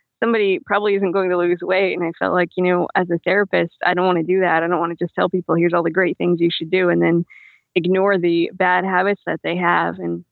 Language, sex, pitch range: English, female, 170-195 Hz